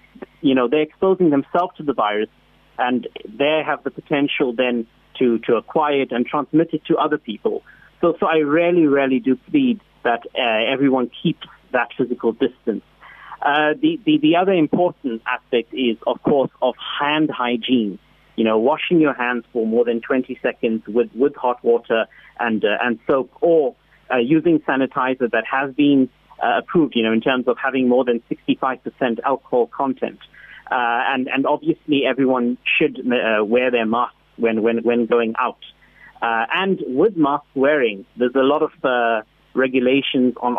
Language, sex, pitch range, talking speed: English, male, 120-150 Hz, 175 wpm